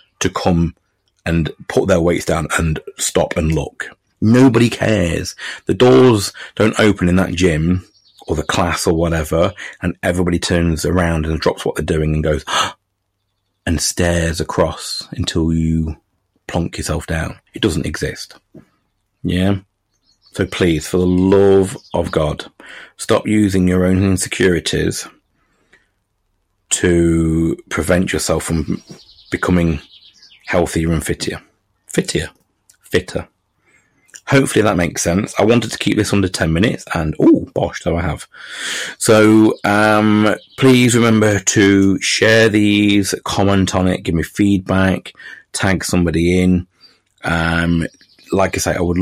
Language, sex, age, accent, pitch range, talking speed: English, male, 30-49, British, 85-100 Hz, 135 wpm